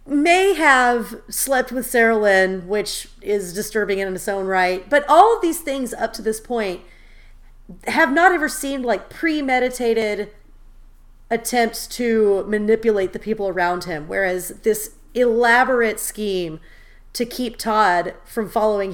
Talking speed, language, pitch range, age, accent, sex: 140 wpm, English, 185-240 Hz, 30-49, American, female